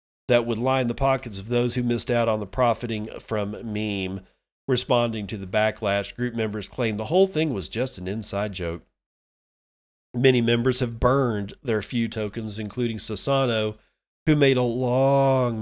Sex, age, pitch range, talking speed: male, 40-59, 105-125 Hz, 165 wpm